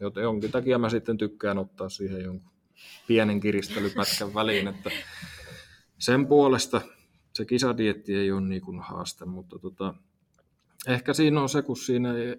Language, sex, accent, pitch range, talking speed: Finnish, male, native, 95-115 Hz, 150 wpm